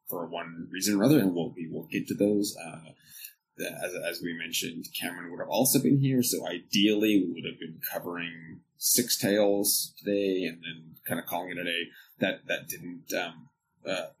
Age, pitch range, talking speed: 20-39, 85-125 Hz, 200 wpm